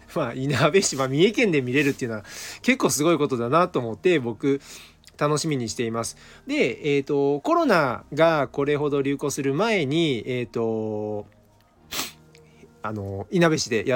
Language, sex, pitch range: Japanese, male, 115-165 Hz